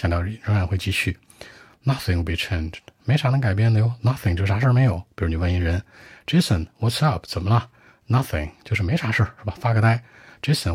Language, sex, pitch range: Chinese, male, 85-110 Hz